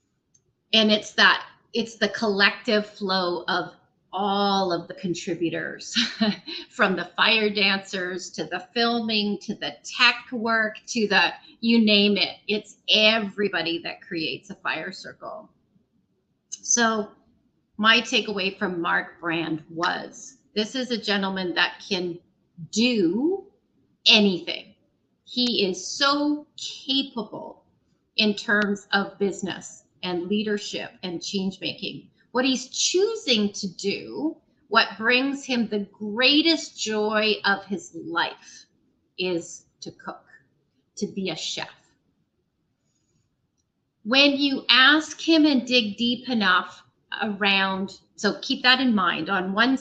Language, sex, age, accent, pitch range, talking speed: English, female, 30-49, American, 190-235 Hz, 120 wpm